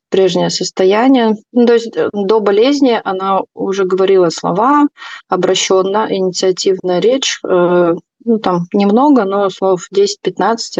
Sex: female